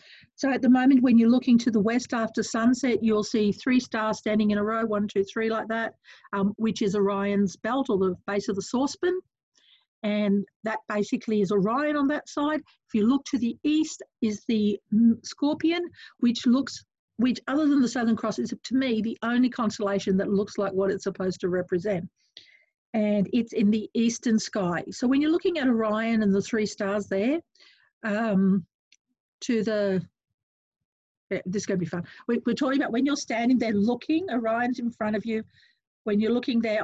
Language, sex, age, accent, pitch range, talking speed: English, female, 50-69, Australian, 200-250 Hz, 195 wpm